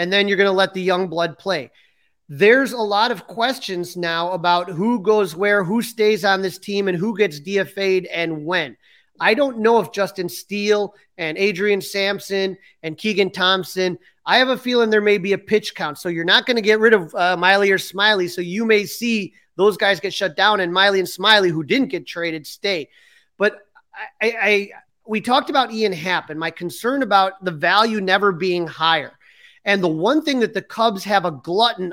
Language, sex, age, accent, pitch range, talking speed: English, male, 30-49, American, 180-215 Hz, 210 wpm